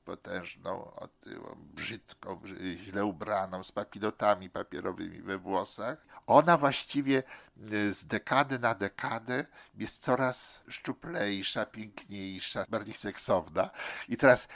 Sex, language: male, Polish